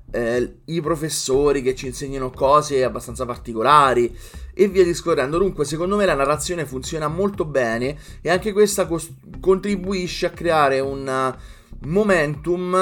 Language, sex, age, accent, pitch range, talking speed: Italian, male, 20-39, native, 130-170 Hz, 125 wpm